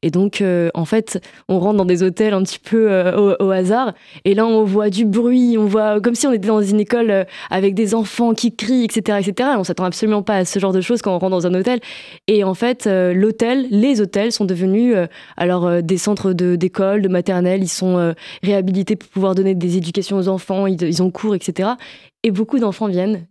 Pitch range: 175-205 Hz